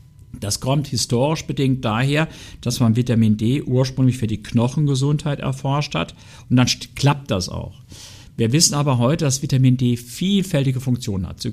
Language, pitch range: German, 110-135 Hz